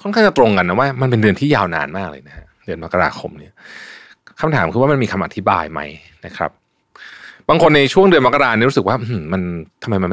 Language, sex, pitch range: Thai, male, 90-125 Hz